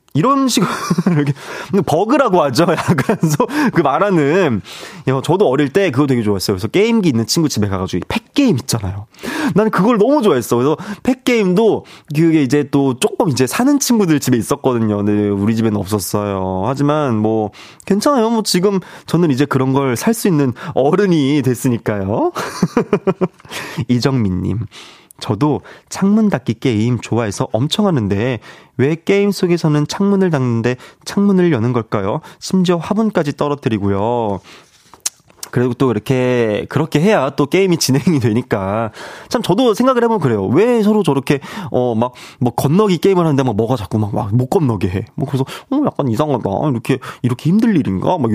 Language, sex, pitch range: Korean, male, 115-190 Hz